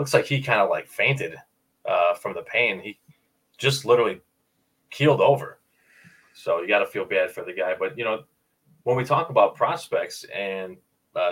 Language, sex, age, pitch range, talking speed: English, male, 20-39, 95-130 Hz, 185 wpm